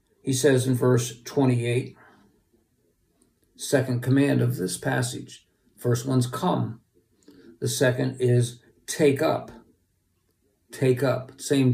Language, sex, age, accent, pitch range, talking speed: English, male, 50-69, American, 120-140 Hz, 105 wpm